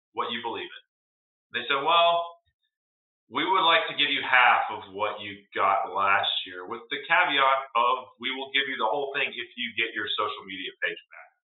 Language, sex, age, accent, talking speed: English, male, 30-49, American, 205 wpm